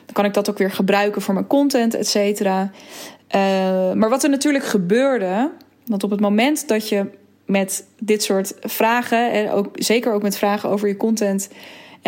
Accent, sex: Dutch, female